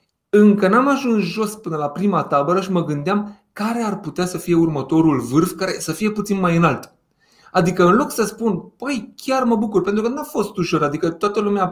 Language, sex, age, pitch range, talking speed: Romanian, male, 30-49, 150-205 Hz, 210 wpm